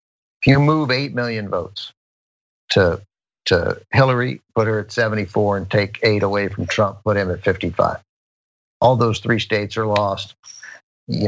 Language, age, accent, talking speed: English, 50-69, American, 155 wpm